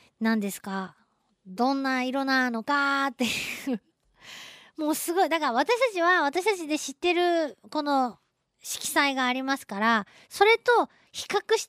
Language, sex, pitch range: Japanese, female, 200-285 Hz